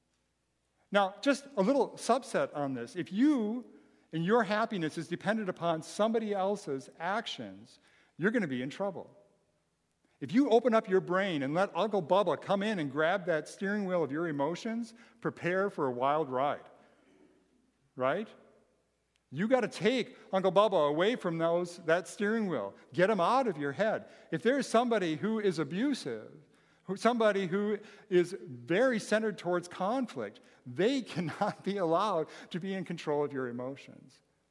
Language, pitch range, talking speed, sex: English, 150-215 Hz, 160 wpm, male